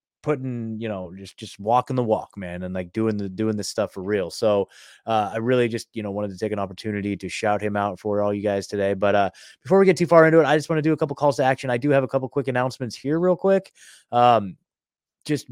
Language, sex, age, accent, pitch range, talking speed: English, male, 20-39, American, 105-130 Hz, 270 wpm